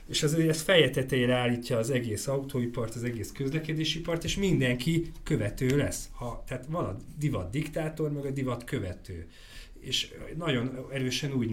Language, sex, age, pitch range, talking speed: Hungarian, male, 30-49, 110-145 Hz, 150 wpm